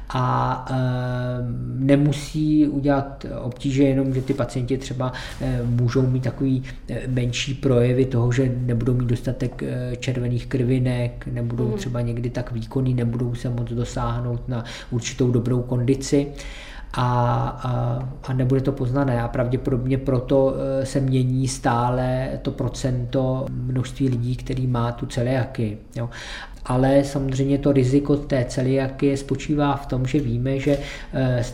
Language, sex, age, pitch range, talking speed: Czech, male, 20-39, 120-135 Hz, 135 wpm